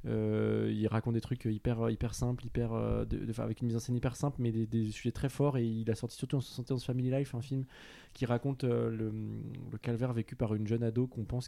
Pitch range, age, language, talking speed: 110-130 Hz, 20-39, French, 255 wpm